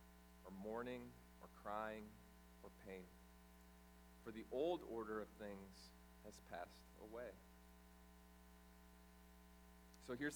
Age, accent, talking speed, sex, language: 40-59, American, 100 wpm, male, English